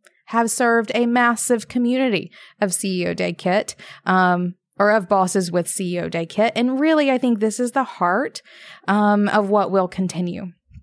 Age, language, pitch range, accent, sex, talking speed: 20-39, English, 185-235 Hz, American, female, 165 wpm